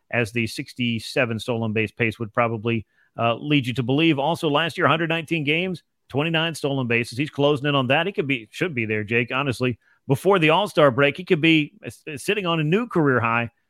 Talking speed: 215 wpm